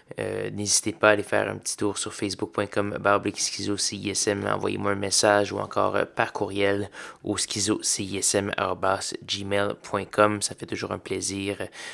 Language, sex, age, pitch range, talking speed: French, male, 20-39, 105-120 Hz, 125 wpm